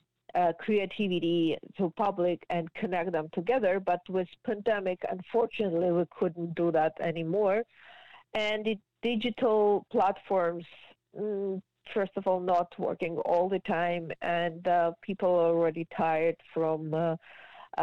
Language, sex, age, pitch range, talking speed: English, female, 50-69, 170-215 Hz, 125 wpm